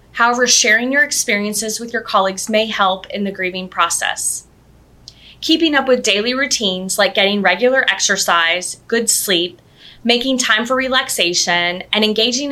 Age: 20-39